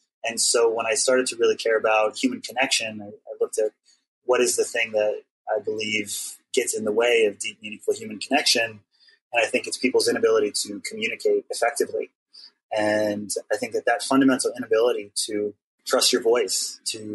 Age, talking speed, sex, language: 20-39, 180 wpm, male, English